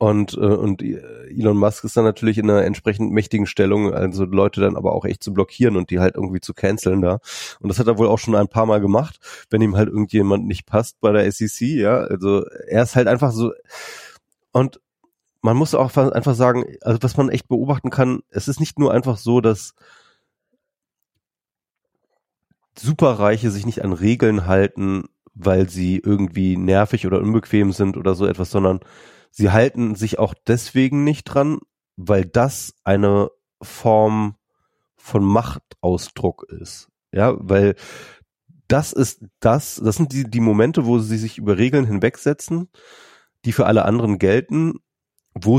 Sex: male